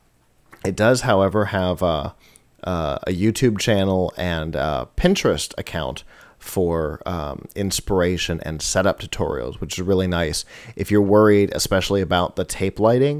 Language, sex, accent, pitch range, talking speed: English, male, American, 85-105 Hz, 135 wpm